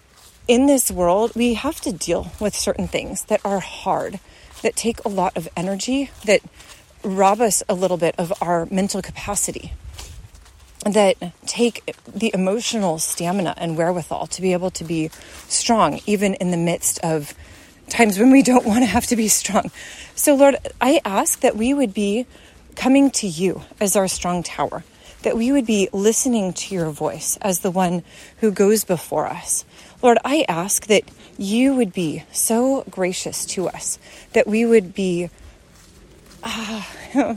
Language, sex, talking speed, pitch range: English, female, 165 wpm, 190-270 Hz